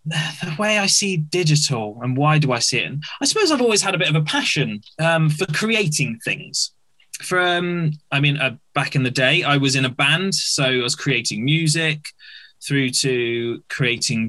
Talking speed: 195 wpm